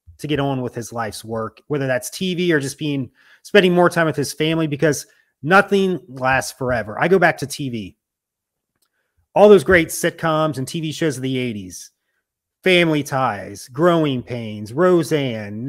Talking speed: 165 wpm